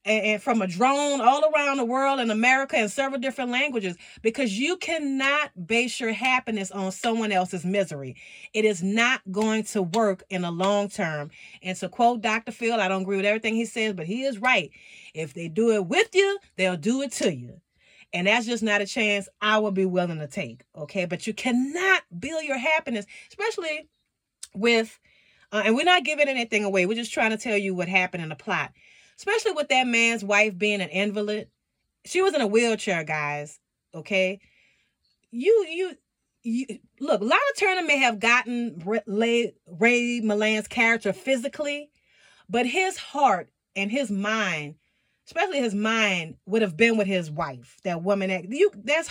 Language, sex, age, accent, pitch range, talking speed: English, female, 30-49, American, 195-270 Hz, 180 wpm